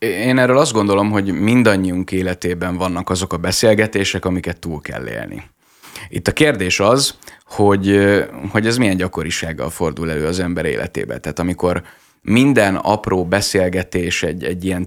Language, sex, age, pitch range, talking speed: Hungarian, male, 20-39, 90-100 Hz, 150 wpm